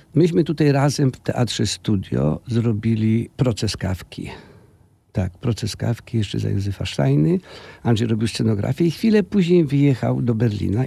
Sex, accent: male, native